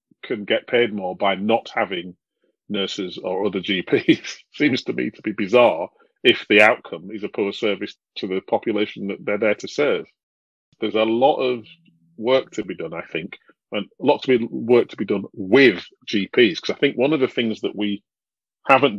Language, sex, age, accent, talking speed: English, male, 40-59, British, 195 wpm